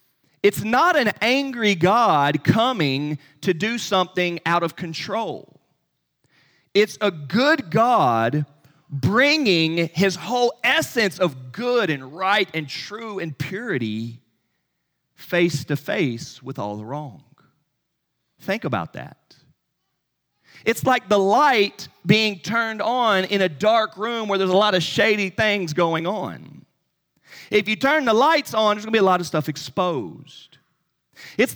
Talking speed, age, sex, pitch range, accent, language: 140 wpm, 40-59, male, 145-215 Hz, American, English